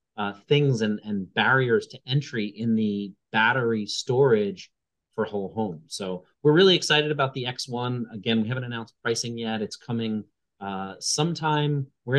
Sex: male